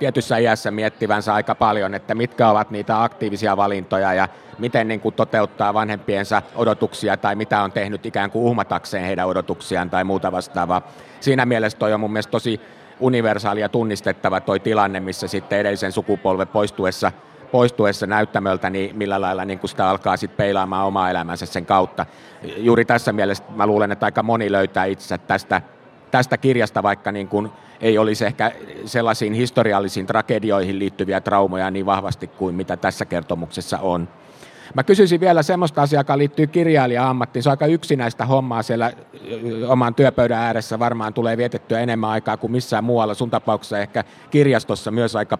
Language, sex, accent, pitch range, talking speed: Finnish, male, native, 100-120 Hz, 165 wpm